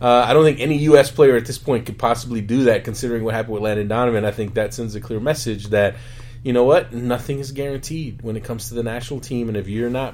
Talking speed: 265 wpm